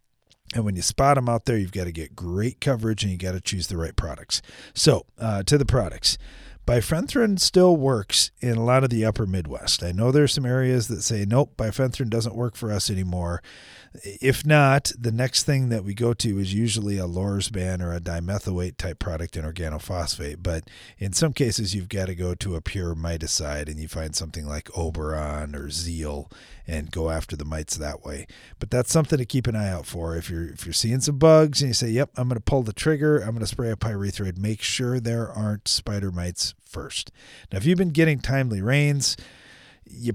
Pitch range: 85-125 Hz